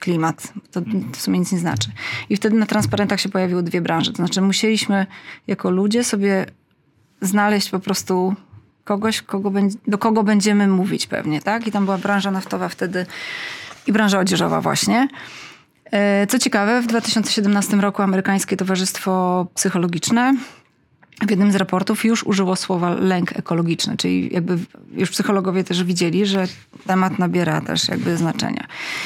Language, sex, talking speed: Polish, female, 150 wpm